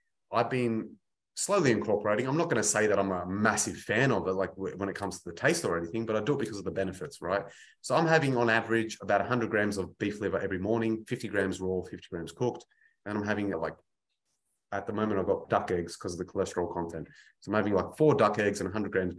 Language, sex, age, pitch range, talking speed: English, male, 30-49, 95-120 Hz, 250 wpm